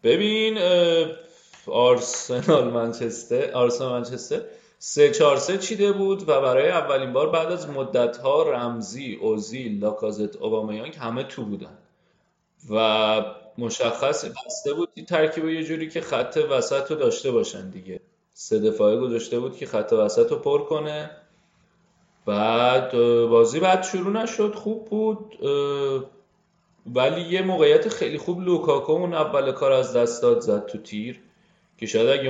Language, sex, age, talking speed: Persian, male, 30-49, 135 wpm